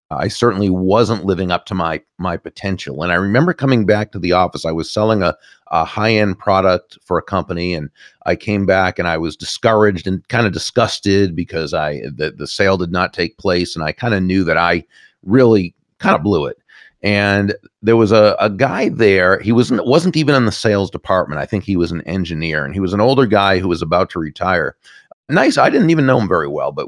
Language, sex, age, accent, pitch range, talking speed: English, male, 40-59, American, 85-105 Hz, 225 wpm